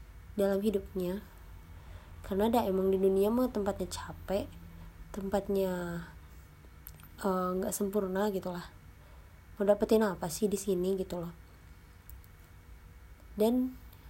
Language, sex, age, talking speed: Indonesian, female, 20-39, 95 wpm